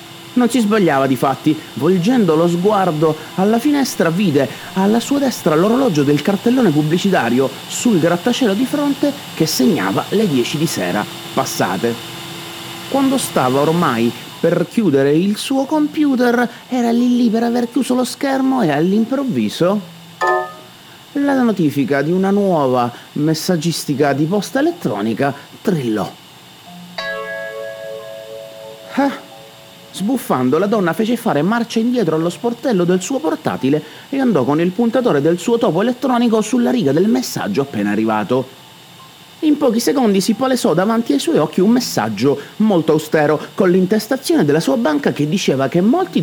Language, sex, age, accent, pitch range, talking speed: Italian, male, 30-49, native, 150-240 Hz, 140 wpm